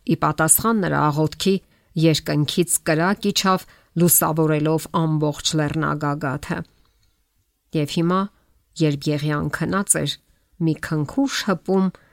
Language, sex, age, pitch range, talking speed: English, female, 50-69, 150-185 Hz, 85 wpm